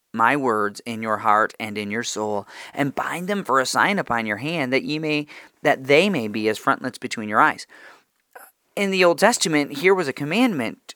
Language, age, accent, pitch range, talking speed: English, 40-59, American, 115-145 Hz, 210 wpm